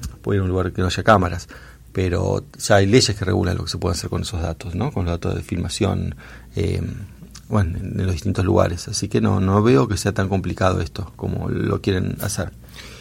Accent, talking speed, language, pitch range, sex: Argentinian, 220 wpm, Spanish, 95-120 Hz, male